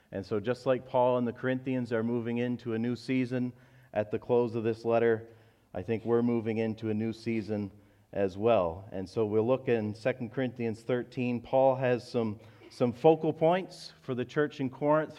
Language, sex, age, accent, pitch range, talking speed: English, male, 40-59, American, 105-125 Hz, 195 wpm